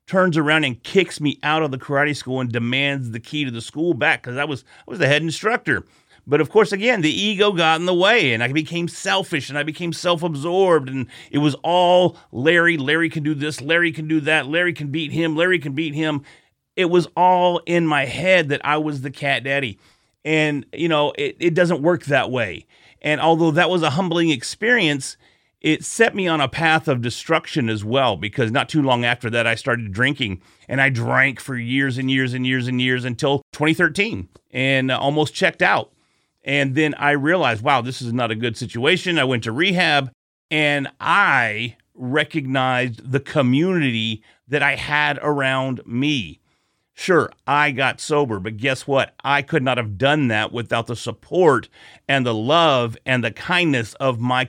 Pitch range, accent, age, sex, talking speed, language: 125-160 Hz, American, 30-49, male, 195 wpm, English